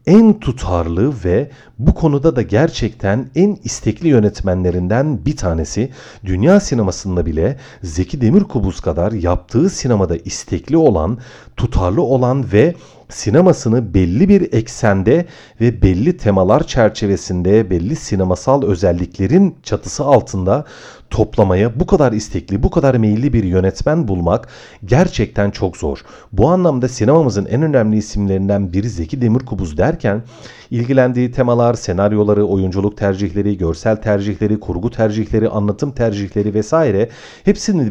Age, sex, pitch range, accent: 40-59, male, 95-130 Hz, native